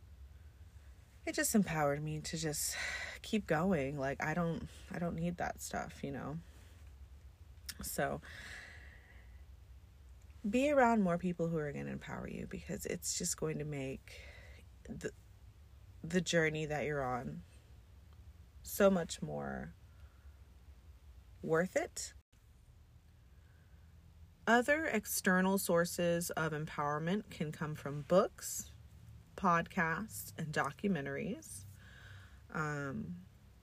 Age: 30-49